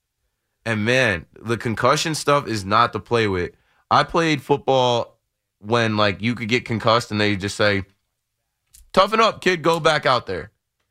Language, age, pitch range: English, 20-39, 95-115 Hz